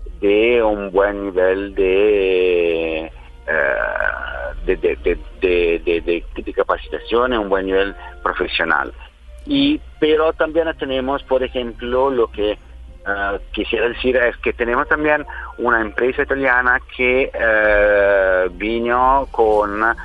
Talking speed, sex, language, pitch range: 115 wpm, male, Spanish, 95-135 Hz